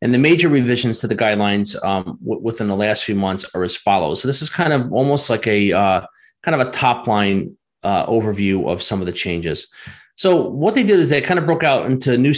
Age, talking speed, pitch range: 30-49, 240 wpm, 105-130 Hz